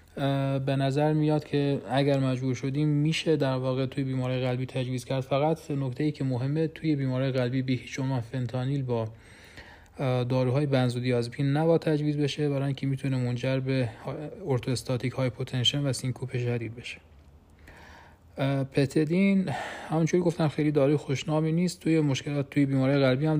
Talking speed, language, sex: 145 wpm, Persian, male